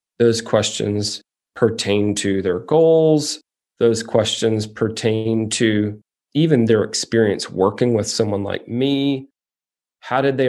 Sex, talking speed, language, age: male, 120 wpm, English, 30-49